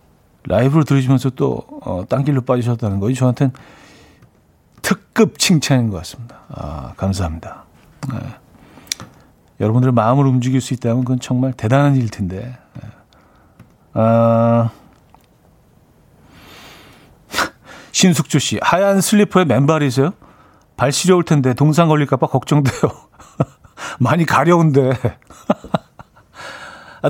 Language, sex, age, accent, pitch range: Korean, male, 50-69, native, 115-155 Hz